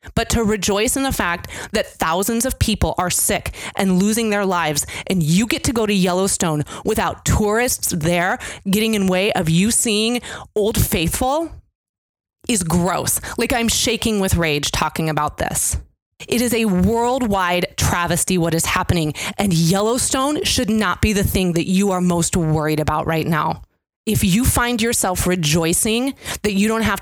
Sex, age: female, 30-49